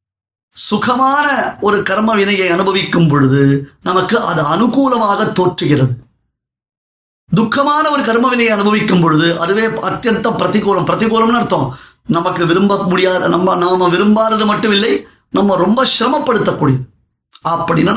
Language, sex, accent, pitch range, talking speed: Tamil, male, native, 165-215 Hz, 105 wpm